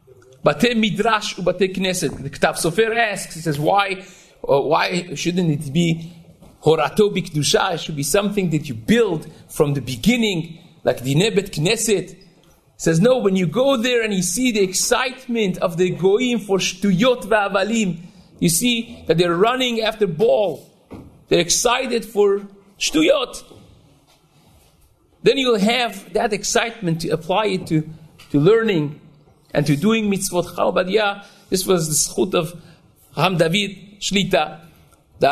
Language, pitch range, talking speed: Hebrew, 170-220 Hz, 145 wpm